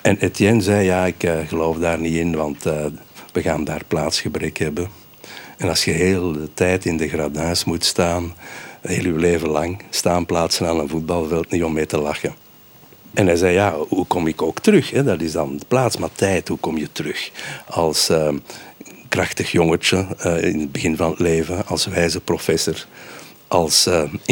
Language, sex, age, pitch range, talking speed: Dutch, male, 60-79, 80-95 Hz, 195 wpm